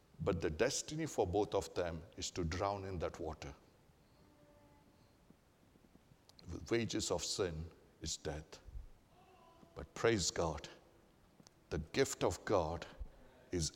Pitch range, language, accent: 110-160 Hz, English, Indian